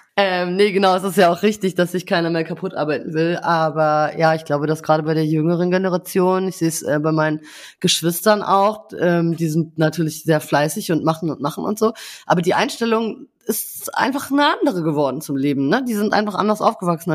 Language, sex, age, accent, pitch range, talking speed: German, female, 20-39, German, 160-205 Hz, 215 wpm